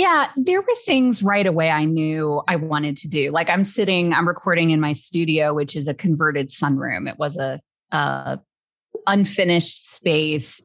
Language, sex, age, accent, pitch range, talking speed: English, female, 30-49, American, 155-210 Hz, 175 wpm